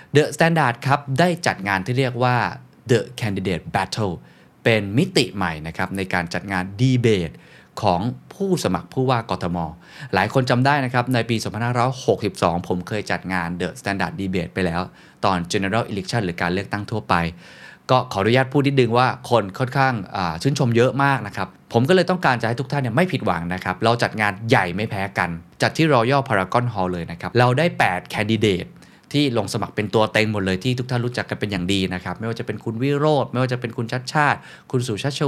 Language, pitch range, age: Thai, 100-130 Hz, 20-39